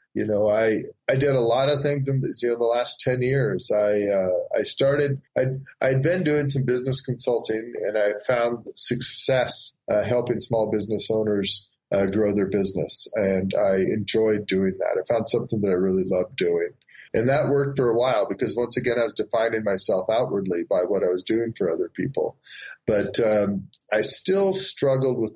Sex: male